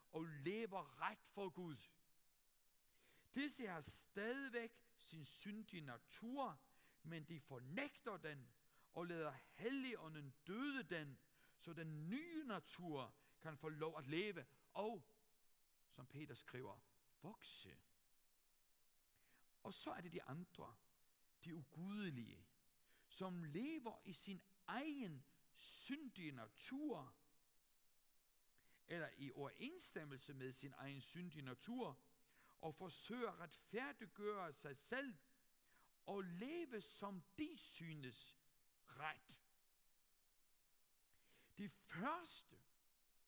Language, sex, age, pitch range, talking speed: Danish, male, 60-79, 145-230 Hz, 100 wpm